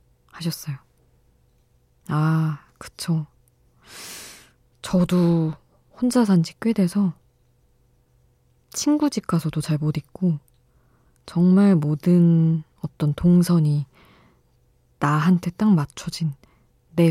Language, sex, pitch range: Korean, female, 145-180 Hz